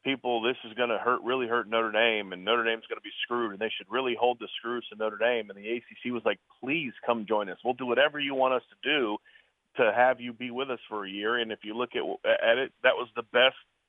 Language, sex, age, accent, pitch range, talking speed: English, male, 40-59, American, 110-130 Hz, 280 wpm